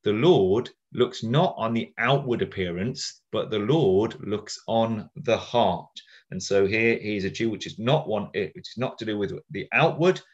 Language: English